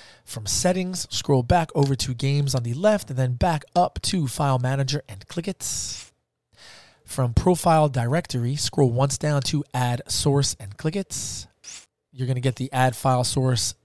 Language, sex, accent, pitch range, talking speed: English, male, American, 125-165 Hz, 170 wpm